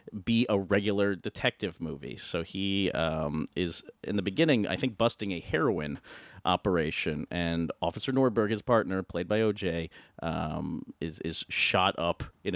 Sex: male